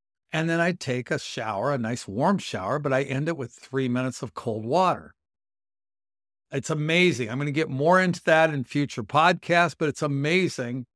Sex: male